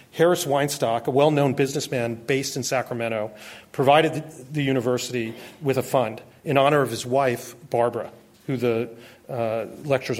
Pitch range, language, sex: 125-150 Hz, English, male